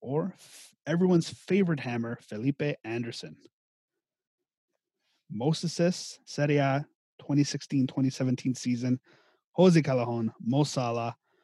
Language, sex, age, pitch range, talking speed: English, male, 30-49, 125-165 Hz, 90 wpm